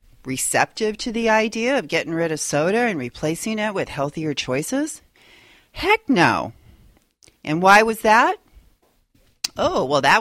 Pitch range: 140-200 Hz